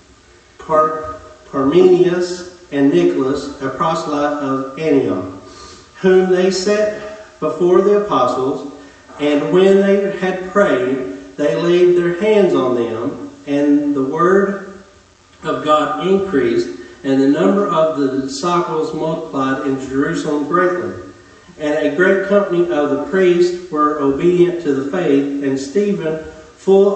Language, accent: English, American